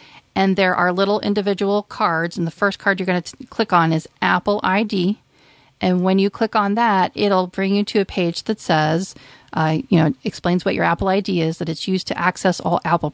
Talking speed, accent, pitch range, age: 220 wpm, American, 170-210 Hz, 40-59